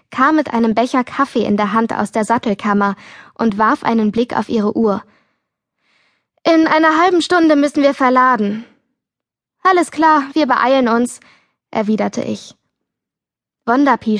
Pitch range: 215-260 Hz